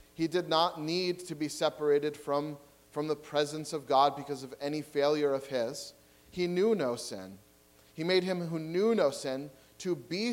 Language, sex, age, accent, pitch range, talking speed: English, male, 30-49, American, 135-170 Hz, 185 wpm